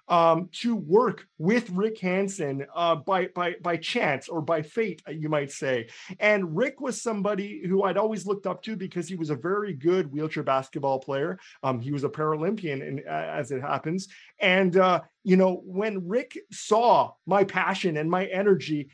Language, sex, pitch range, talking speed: English, male, 165-210 Hz, 180 wpm